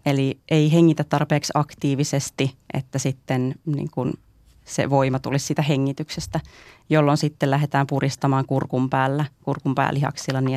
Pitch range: 135-155 Hz